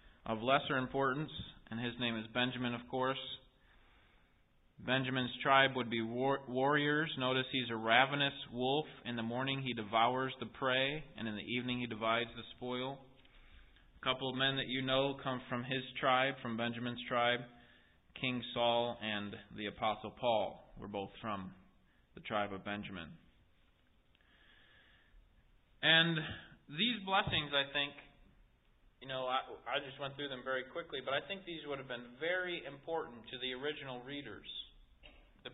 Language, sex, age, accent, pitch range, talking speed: English, male, 20-39, American, 120-170 Hz, 155 wpm